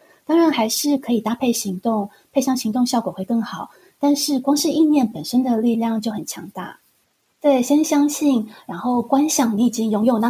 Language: Chinese